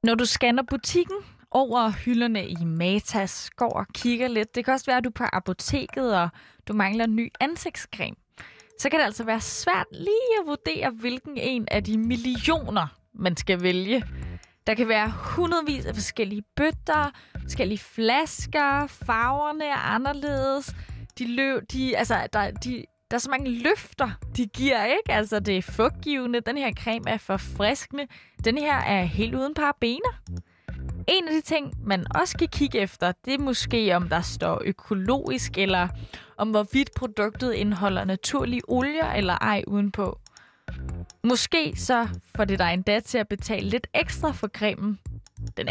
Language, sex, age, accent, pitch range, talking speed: Danish, female, 20-39, native, 195-275 Hz, 165 wpm